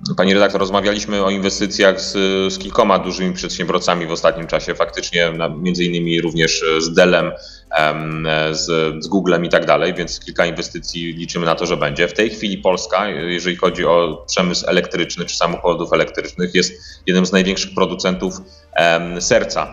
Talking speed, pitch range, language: 155 wpm, 85-95 Hz, Polish